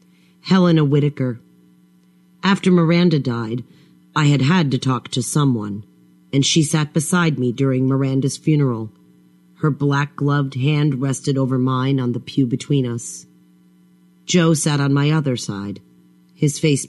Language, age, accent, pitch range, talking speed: English, 40-59, American, 95-150 Hz, 140 wpm